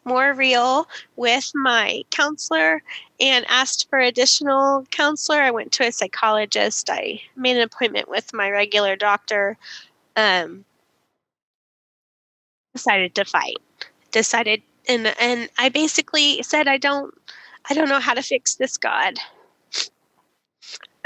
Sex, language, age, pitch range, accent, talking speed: female, English, 10-29, 235-275 Hz, American, 125 wpm